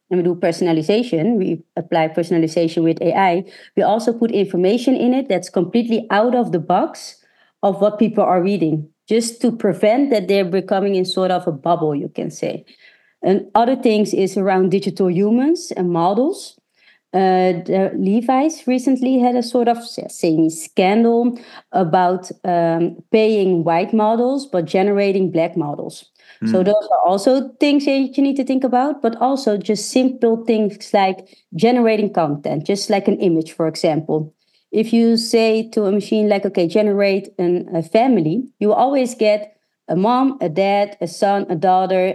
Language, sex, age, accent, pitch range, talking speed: English, female, 30-49, Dutch, 180-230 Hz, 165 wpm